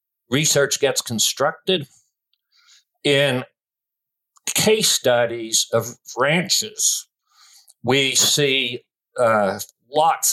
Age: 60-79